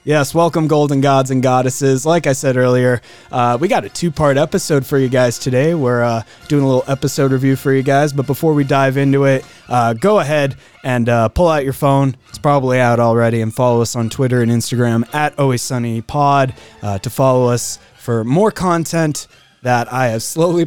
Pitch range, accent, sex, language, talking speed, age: 120-155 Hz, American, male, English, 200 wpm, 20-39